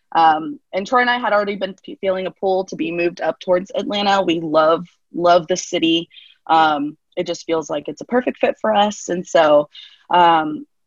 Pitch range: 165-230 Hz